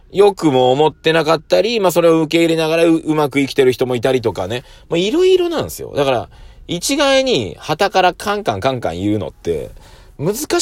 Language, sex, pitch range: Japanese, male, 115-175 Hz